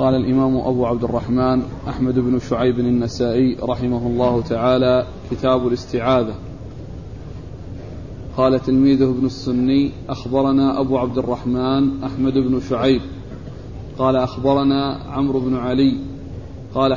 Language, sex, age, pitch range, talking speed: Arabic, male, 40-59, 130-145 Hz, 110 wpm